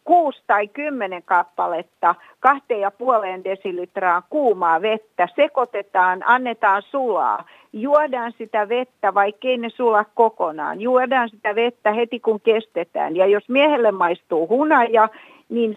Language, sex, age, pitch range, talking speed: Finnish, female, 50-69, 195-255 Hz, 120 wpm